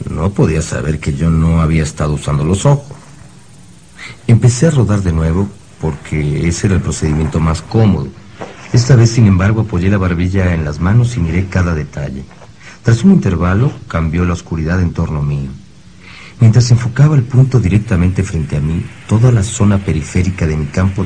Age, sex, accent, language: 50-69, male, Mexican, Spanish